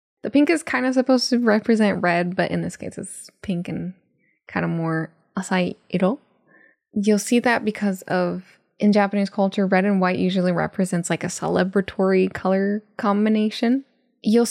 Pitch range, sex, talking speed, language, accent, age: 185-230 Hz, female, 160 wpm, English, American, 10-29